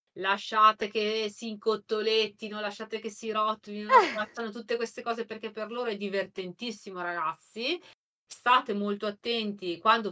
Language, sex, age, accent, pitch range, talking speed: Italian, female, 30-49, native, 170-215 Hz, 125 wpm